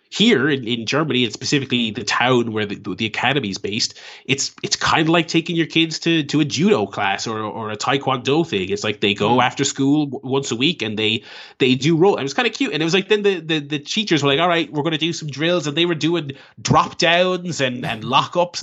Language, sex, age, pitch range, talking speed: English, male, 20-39, 105-145 Hz, 255 wpm